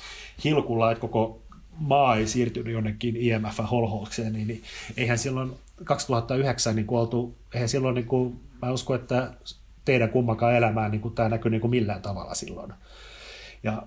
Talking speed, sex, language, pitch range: 140 wpm, male, Finnish, 110-120 Hz